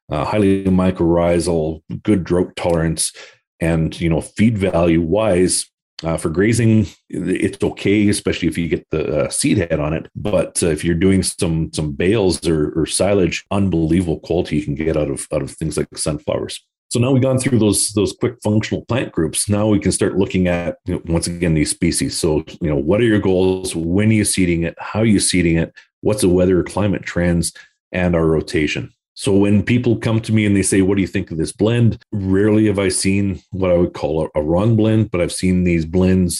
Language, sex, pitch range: English, male, 85-100 Hz